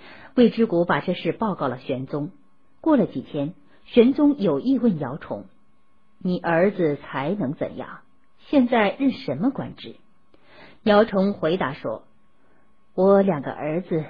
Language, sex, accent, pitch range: Chinese, female, native, 155-235 Hz